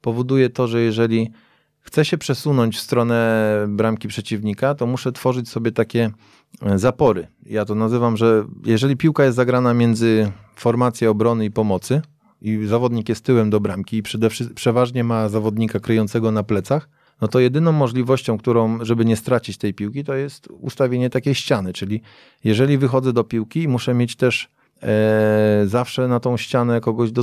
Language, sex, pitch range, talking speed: Polish, male, 110-130 Hz, 165 wpm